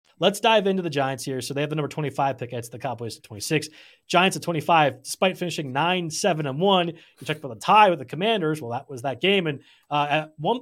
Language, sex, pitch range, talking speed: English, male, 130-165 Hz, 245 wpm